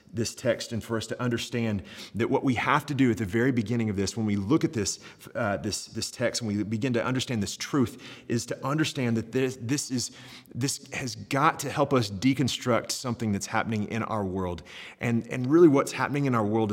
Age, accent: 30-49, American